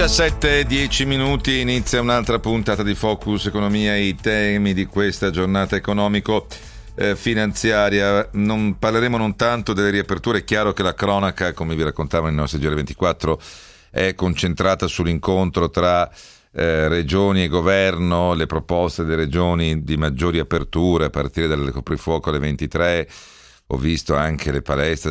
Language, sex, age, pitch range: Italian, male, 40-59, 75-100 Hz